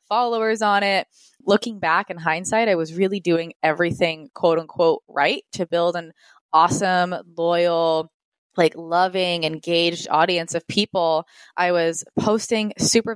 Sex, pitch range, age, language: female, 165-205 Hz, 20-39, English